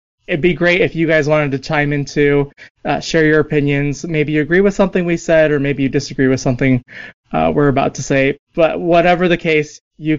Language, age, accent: English, 20-39, American